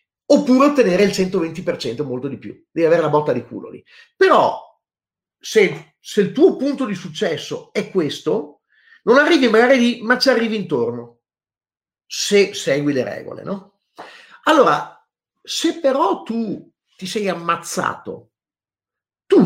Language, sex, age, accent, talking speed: Italian, male, 50-69, native, 140 wpm